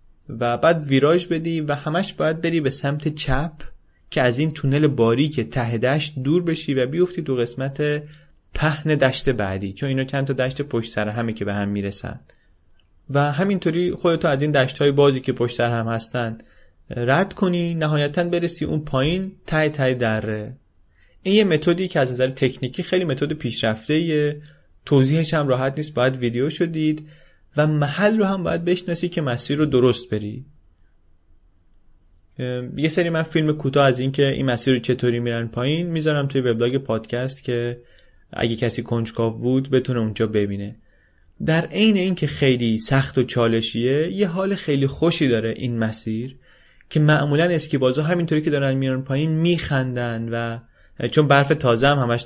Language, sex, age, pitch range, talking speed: Persian, male, 30-49, 120-155 Hz, 165 wpm